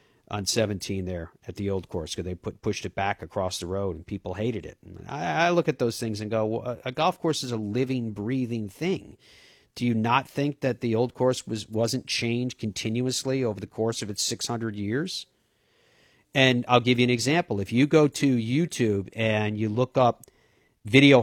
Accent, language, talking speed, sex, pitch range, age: American, English, 210 wpm, male, 110-135 Hz, 50-69